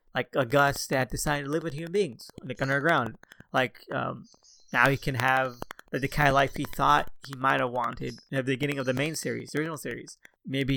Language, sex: English, male